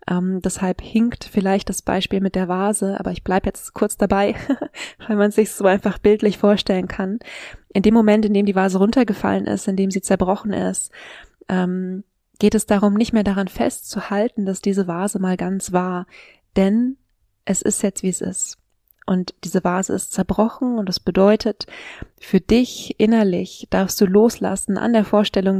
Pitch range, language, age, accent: 190-210 Hz, German, 20-39, German